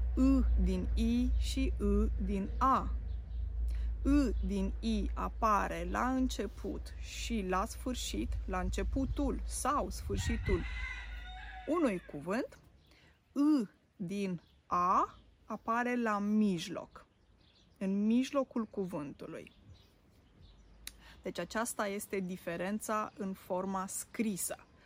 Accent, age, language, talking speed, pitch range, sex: native, 20-39, Romanian, 90 wpm, 190-245 Hz, female